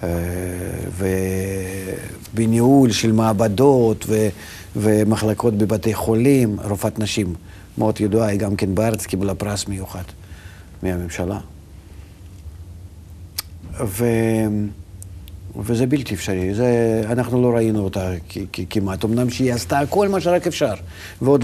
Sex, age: male, 50-69